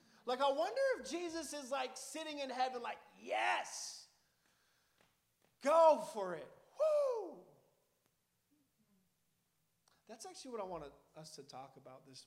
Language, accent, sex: English, American, male